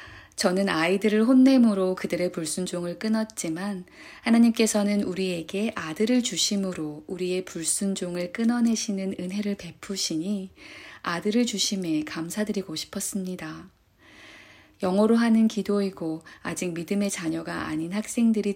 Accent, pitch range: native, 170-210 Hz